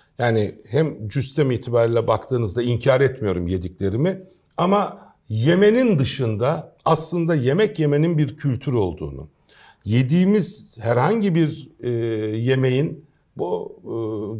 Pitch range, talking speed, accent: 115-165 Hz, 100 wpm, native